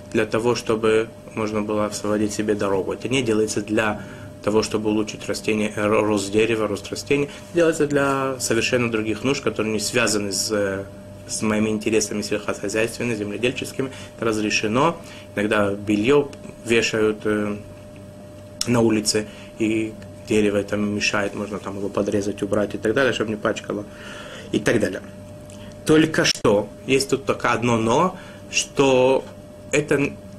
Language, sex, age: Russian, male, 20-39